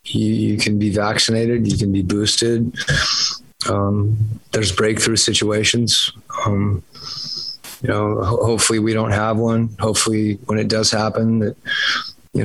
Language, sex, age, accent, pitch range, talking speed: English, male, 30-49, American, 105-110 Hz, 135 wpm